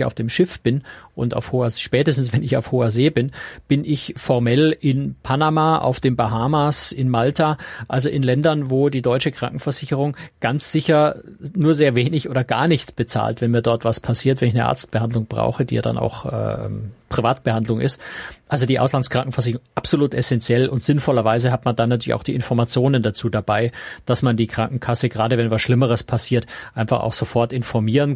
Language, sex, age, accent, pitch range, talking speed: German, male, 40-59, German, 115-140 Hz, 185 wpm